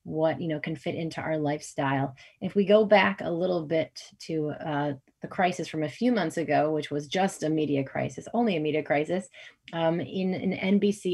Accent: American